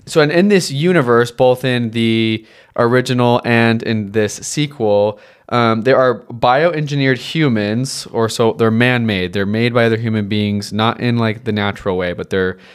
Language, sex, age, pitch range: English, male, 20-39, 110-130 Hz